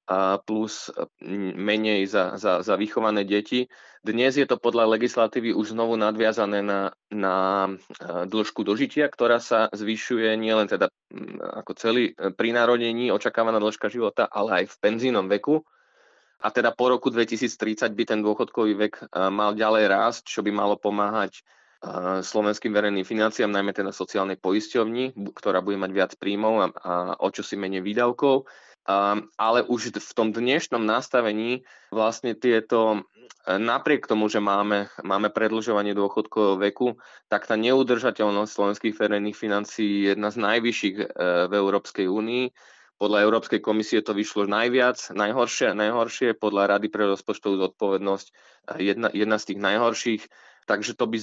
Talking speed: 140 wpm